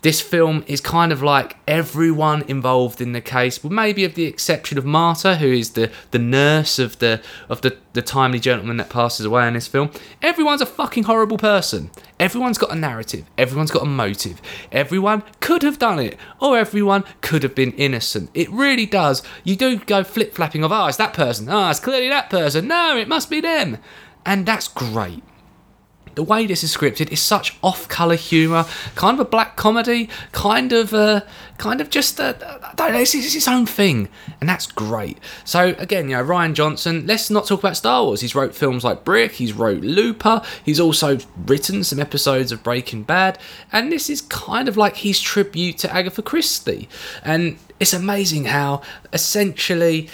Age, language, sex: 20-39, English, male